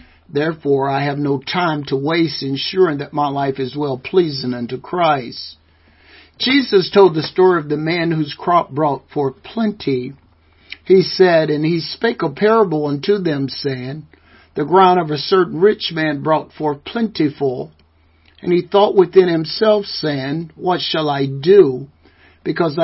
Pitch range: 135-170 Hz